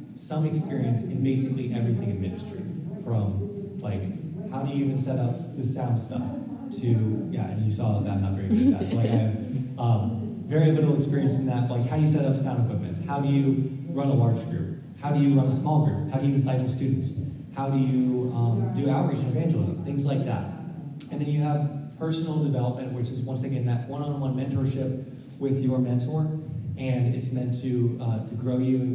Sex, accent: male, American